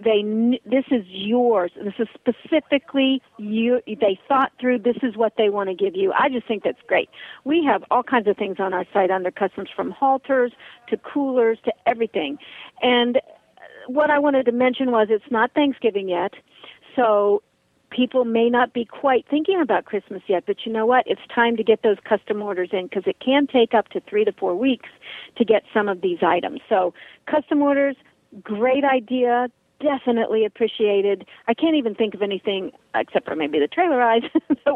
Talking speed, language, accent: 190 wpm, English, American